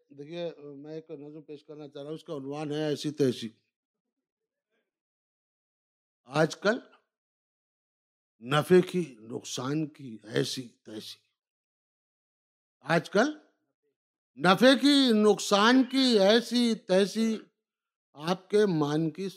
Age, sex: 60-79, male